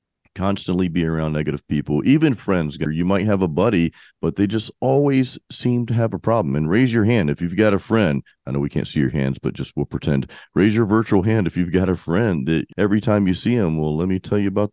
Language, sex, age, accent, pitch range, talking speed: English, male, 40-59, American, 75-100 Hz, 255 wpm